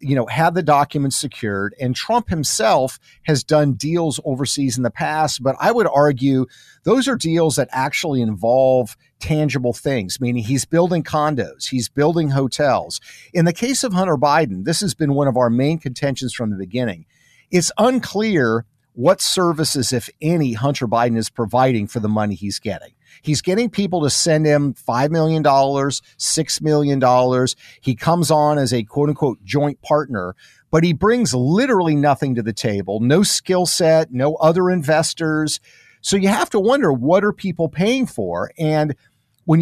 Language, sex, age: English, male, 50-69